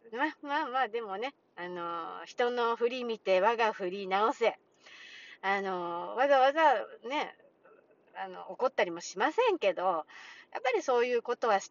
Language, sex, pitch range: Japanese, female, 195-305 Hz